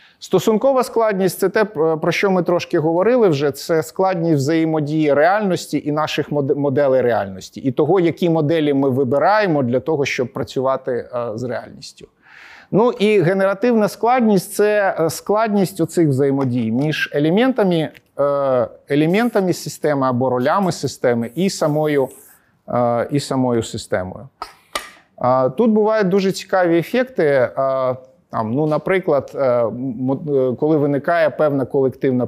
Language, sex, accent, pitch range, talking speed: Ukrainian, male, native, 130-175 Hz, 115 wpm